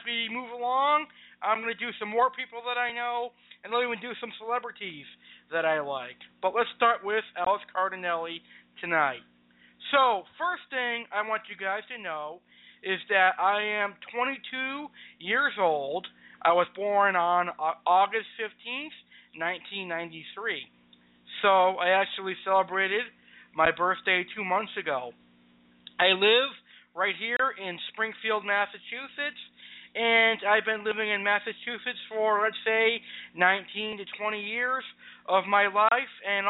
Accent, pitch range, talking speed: American, 185-230 Hz, 140 wpm